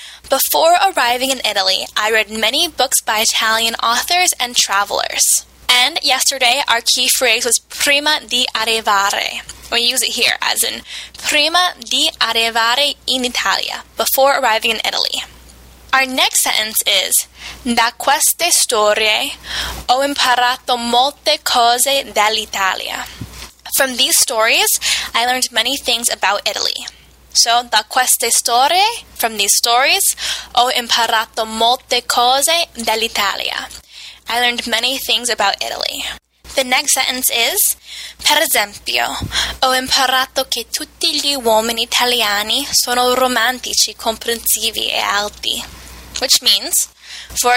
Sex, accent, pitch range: female, American, 225-275 Hz